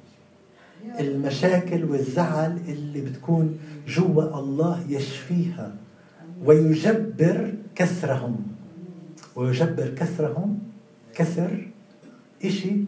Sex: male